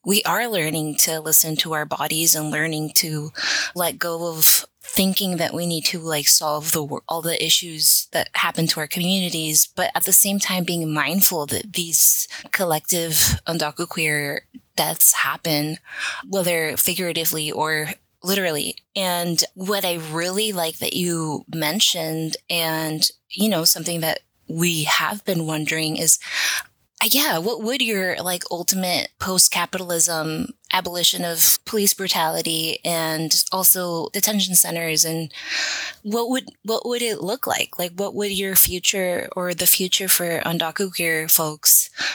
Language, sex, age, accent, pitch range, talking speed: English, female, 20-39, American, 160-185 Hz, 140 wpm